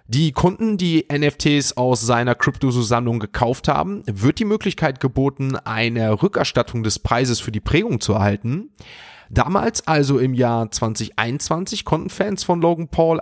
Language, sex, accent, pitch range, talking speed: German, male, German, 115-150 Hz, 150 wpm